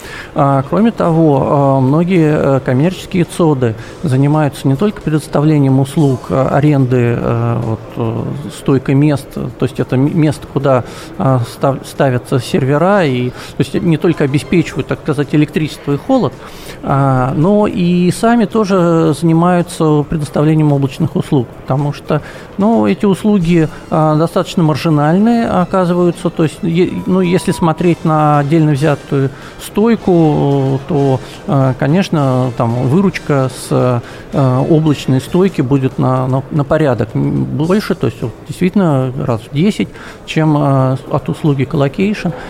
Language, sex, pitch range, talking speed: Russian, male, 135-170 Hz, 115 wpm